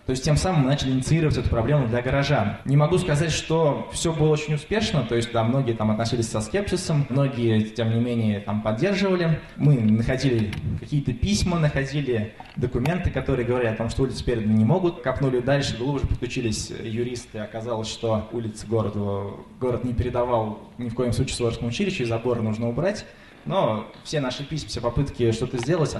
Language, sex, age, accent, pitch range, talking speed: Russian, male, 20-39, native, 115-145 Hz, 180 wpm